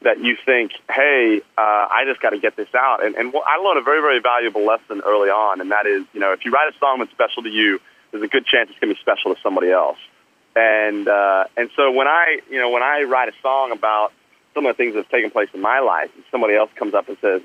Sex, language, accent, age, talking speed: male, English, American, 30-49, 280 wpm